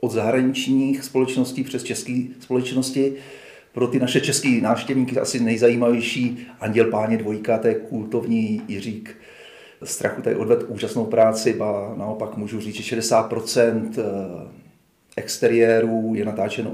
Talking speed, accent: 125 wpm, native